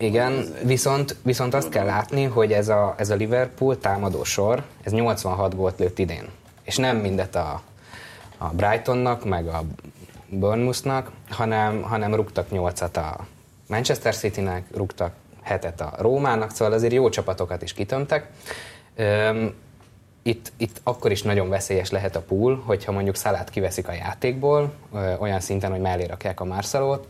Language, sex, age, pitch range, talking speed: Hungarian, male, 20-39, 95-115 Hz, 150 wpm